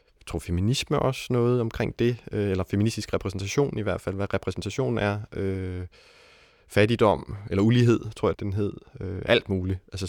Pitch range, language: 90-105 Hz, Danish